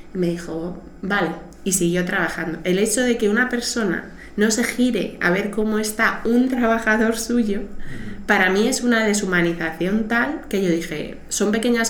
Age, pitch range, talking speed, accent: 20-39, 185-225 Hz, 165 wpm, Spanish